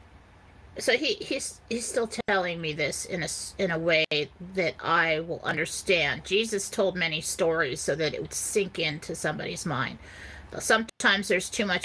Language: English